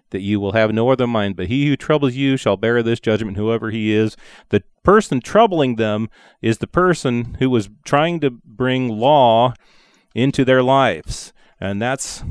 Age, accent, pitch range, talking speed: 30-49, American, 105-130 Hz, 180 wpm